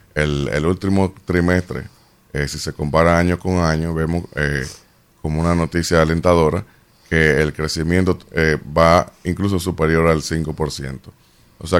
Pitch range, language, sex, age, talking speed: 80-90 Hz, Spanish, male, 30-49, 140 wpm